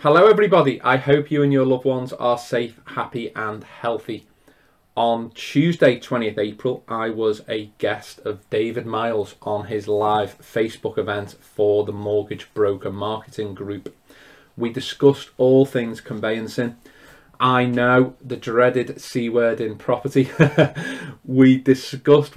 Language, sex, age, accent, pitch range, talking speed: English, male, 30-49, British, 110-130 Hz, 135 wpm